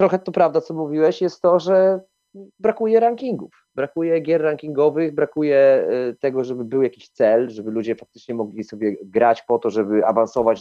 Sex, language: male, Polish